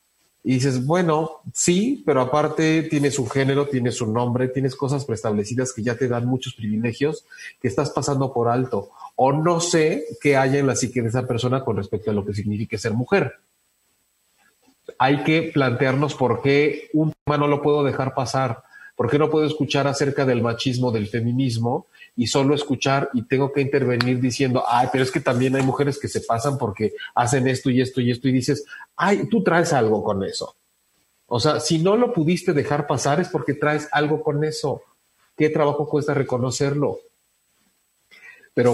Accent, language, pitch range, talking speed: Mexican, Spanish, 125-150 Hz, 185 wpm